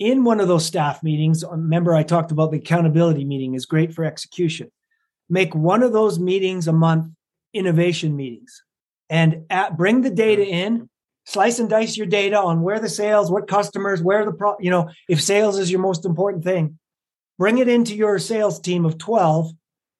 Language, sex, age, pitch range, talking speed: English, male, 30-49, 160-205 Hz, 190 wpm